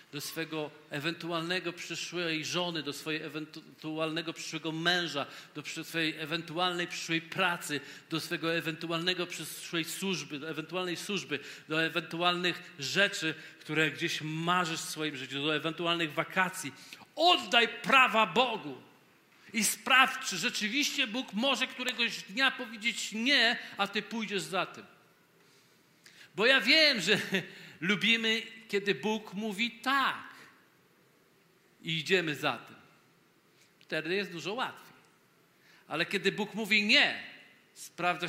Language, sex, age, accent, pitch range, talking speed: Polish, male, 50-69, native, 160-210 Hz, 120 wpm